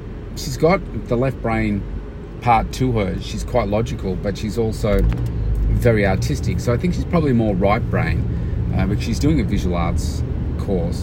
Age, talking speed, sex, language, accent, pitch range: 30-49, 175 wpm, male, English, Australian, 85-105 Hz